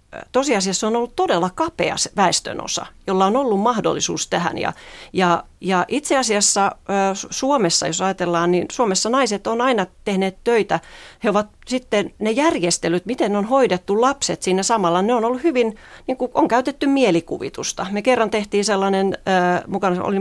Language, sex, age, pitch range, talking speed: Finnish, female, 40-59, 180-220 Hz, 155 wpm